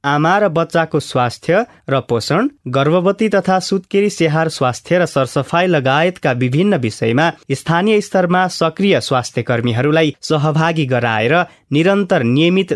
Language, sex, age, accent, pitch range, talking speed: English, male, 20-39, Indian, 125-170 Hz, 115 wpm